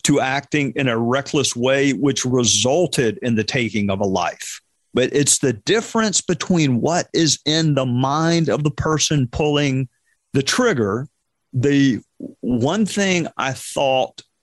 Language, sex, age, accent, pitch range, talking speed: English, male, 50-69, American, 125-150 Hz, 145 wpm